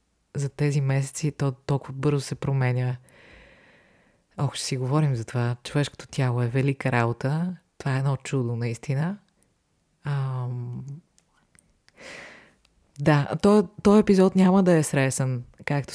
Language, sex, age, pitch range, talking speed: Bulgarian, female, 20-39, 135-160 Hz, 125 wpm